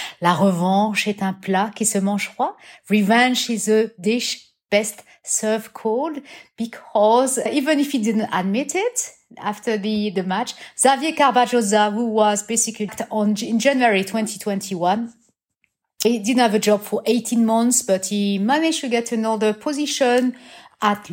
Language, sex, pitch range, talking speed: English, female, 205-250 Hz, 145 wpm